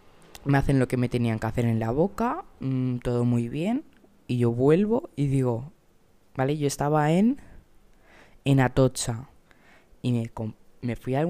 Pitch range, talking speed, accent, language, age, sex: 125-155 Hz, 165 wpm, Spanish, Spanish, 20-39, female